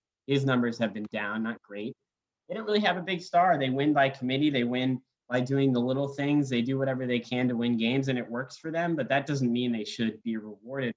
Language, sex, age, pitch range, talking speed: English, male, 20-39, 115-140 Hz, 250 wpm